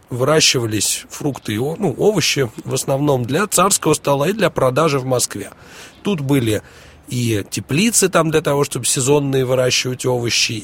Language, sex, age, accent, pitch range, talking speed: Russian, male, 40-59, native, 115-160 Hz, 145 wpm